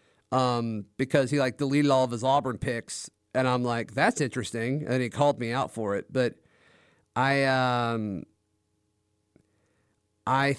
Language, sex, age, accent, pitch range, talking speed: English, male, 30-49, American, 125-170 Hz, 145 wpm